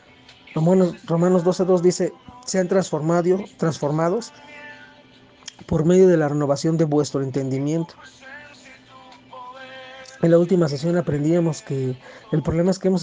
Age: 40-59